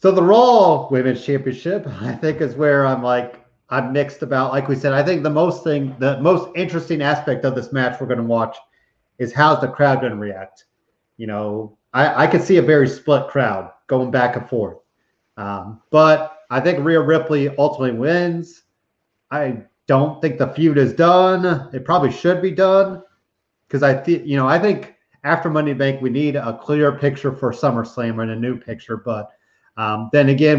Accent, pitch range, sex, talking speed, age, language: American, 125-160 Hz, male, 195 wpm, 30-49, English